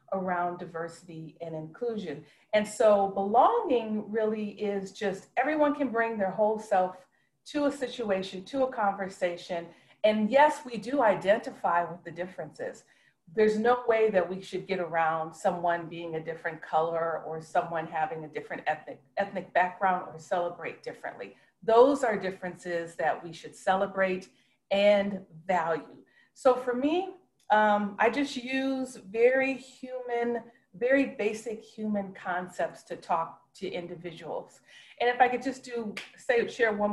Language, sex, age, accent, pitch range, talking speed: English, female, 40-59, American, 180-245 Hz, 145 wpm